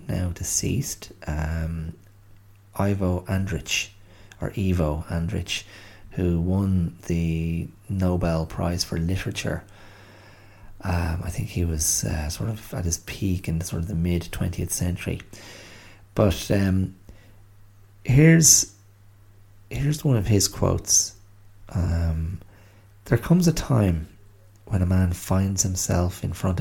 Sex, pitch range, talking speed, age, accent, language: male, 90-105 Hz, 120 wpm, 30-49, Irish, English